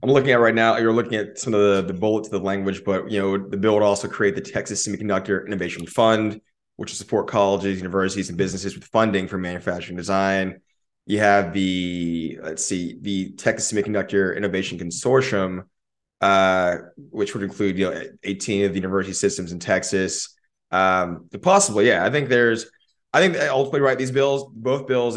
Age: 20-39